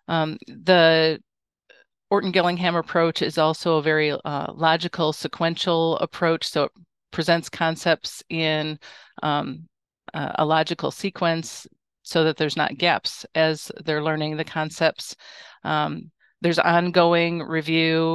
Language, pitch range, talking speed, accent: English, 150-170 Hz, 115 wpm, American